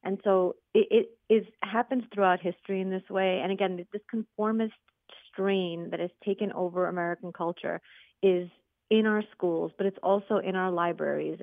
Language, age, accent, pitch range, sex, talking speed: English, 30-49, American, 180-215 Hz, female, 170 wpm